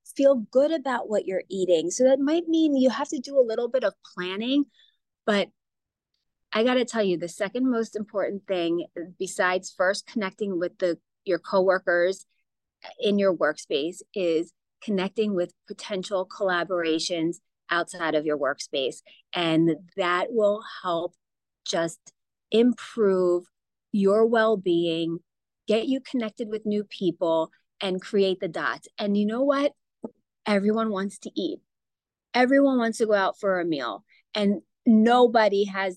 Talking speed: 145 wpm